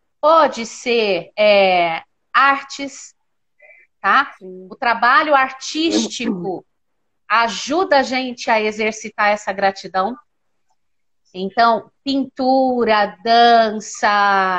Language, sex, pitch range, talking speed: Portuguese, female, 220-300 Hz, 70 wpm